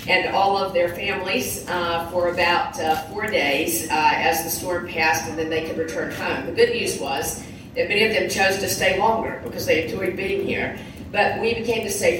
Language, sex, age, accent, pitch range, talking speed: English, female, 40-59, American, 165-215 Hz, 215 wpm